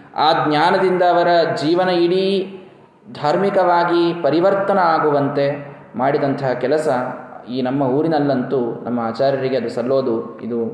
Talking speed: 100 wpm